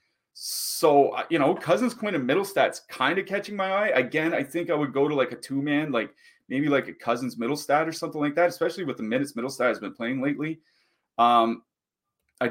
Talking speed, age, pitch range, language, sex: 220 wpm, 30-49, 120-165 Hz, English, male